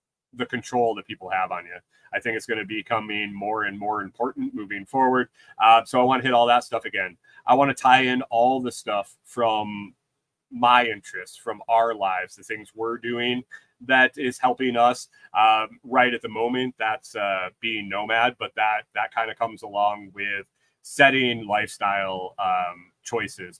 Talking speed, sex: 185 wpm, male